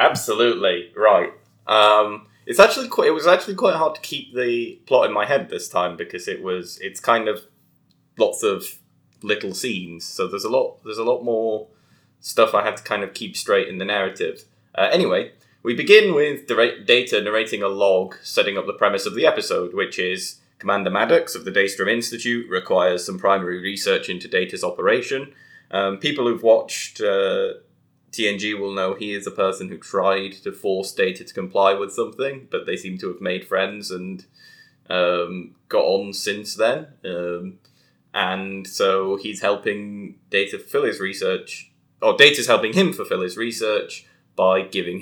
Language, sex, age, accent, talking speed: English, male, 20-39, British, 175 wpm